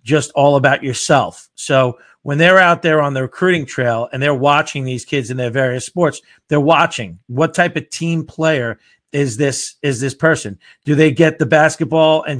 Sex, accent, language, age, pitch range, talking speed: male, American, English, 40-59, 130-155 Hz, 195 wpm